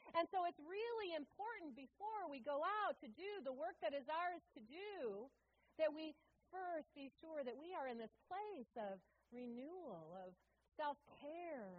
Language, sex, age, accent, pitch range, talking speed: English, female, 40-59, American, 210-320 Hz, 170 wpm